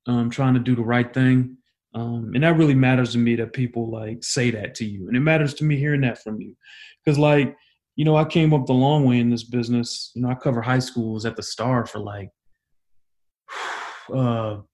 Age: 30-49